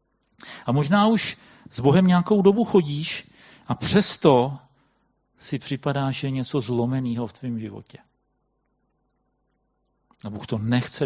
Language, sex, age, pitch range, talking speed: Czech, male, 40-59, 125-165 Hz, 120 wpm